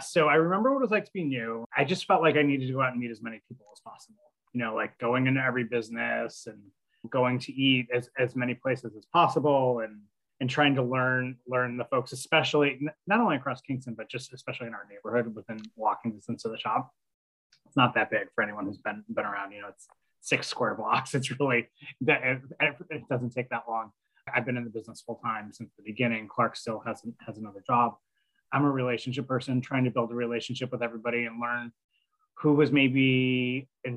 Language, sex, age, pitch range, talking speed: English, male, 20-39, 120-150 Hz, 220 wpm